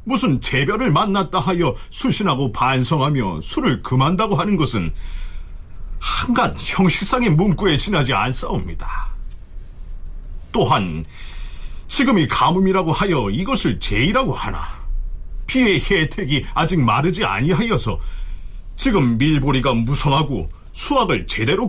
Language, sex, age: Korean, male, 40-59